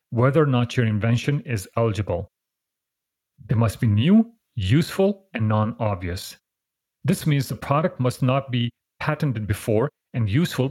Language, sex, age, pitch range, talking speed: English, male, 40-59, 110-135 Hz, 140 wpm